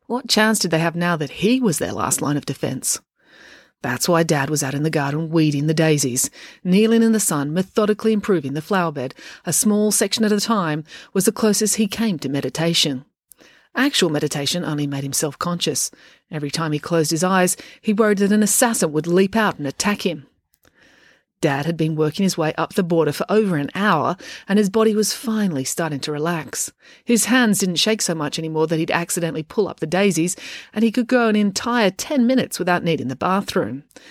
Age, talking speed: 40-59, 205 wpm